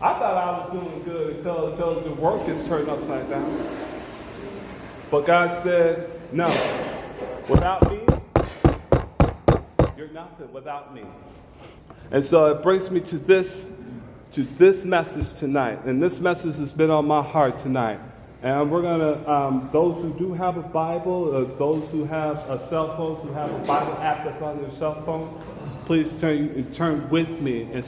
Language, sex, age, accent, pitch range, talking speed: English, male, 30-49, American, 130-175 Hz, 165 wpm